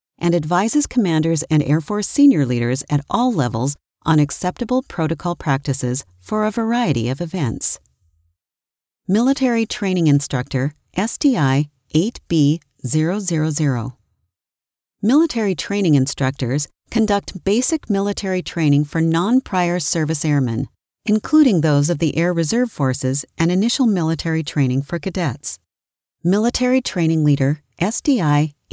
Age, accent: 40-59, American